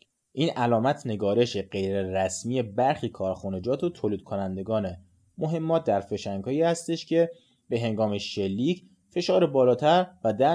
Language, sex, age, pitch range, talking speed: Persian, male, 30-49, 110-165 Hz, 125 wpm